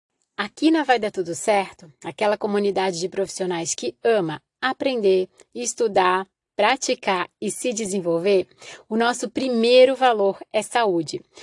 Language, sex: Portuguese, female